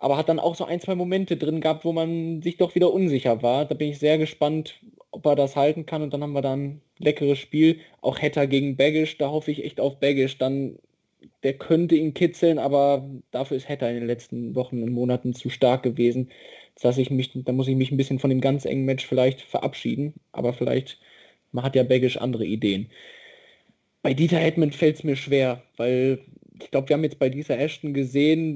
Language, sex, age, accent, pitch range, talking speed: German, male, 20-39, German, 135-155 Hz, 210 wpm